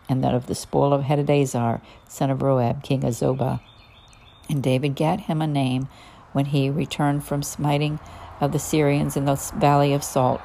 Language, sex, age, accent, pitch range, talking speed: English, female, 50-69, American, 130-150 Hz, 185 wpm